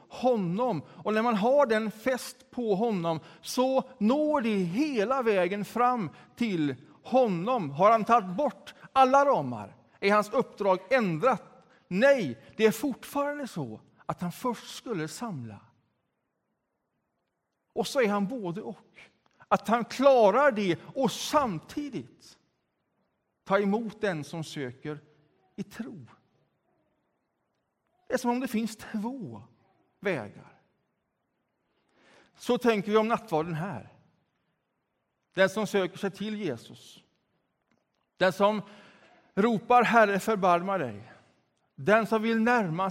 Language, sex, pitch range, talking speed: Swedish, male, 155-235 Hz, 120 wpm